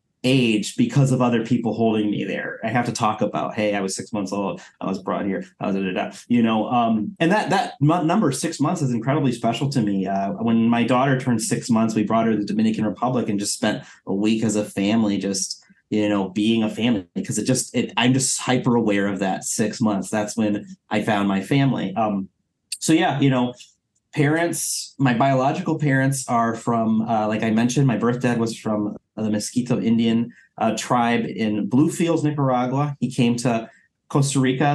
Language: English